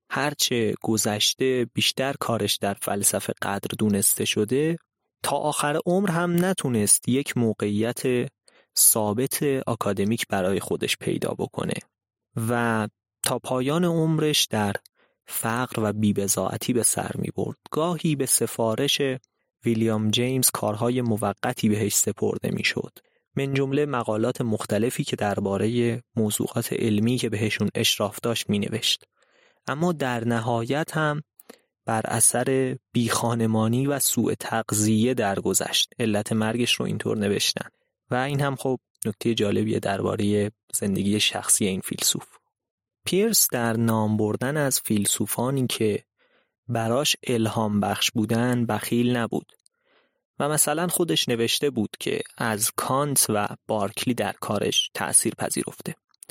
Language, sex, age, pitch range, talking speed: Persian, male, 30-49, 105-135 Hz, 120 wpm